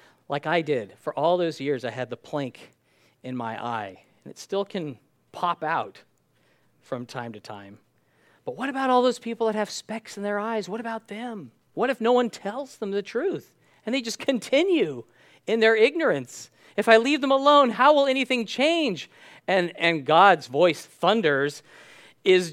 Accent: American